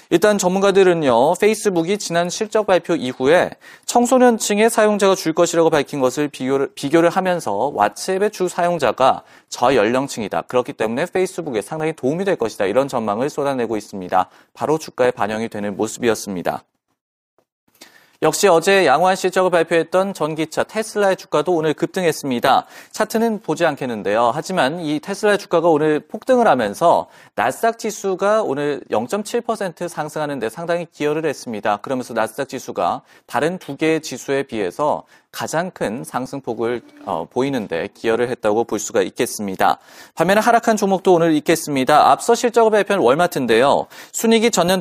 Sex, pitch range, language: male, 140-195 Hz, Korean